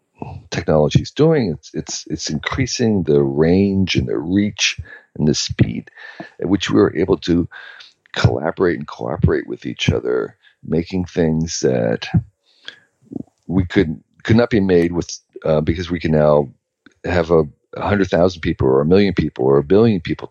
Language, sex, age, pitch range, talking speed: English, male, 50-69, 80-95 Hz, 165 wpm